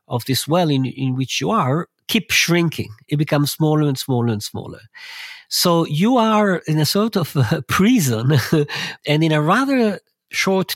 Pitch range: 125-170 Hz